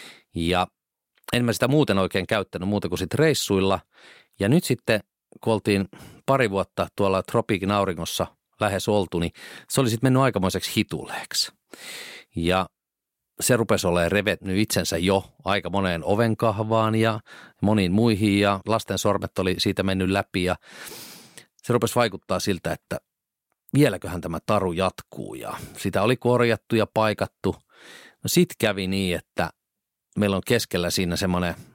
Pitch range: 90-110 Hz